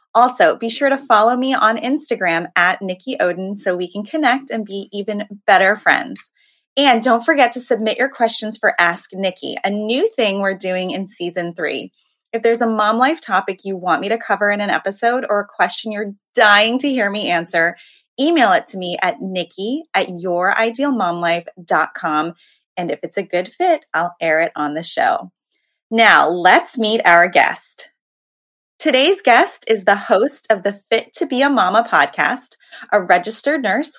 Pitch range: 185-255 Hz